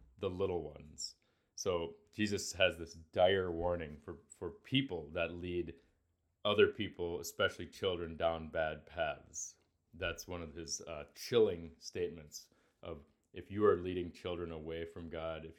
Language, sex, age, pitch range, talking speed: English, male, 30-49, 80-90 Hz, 145 wpm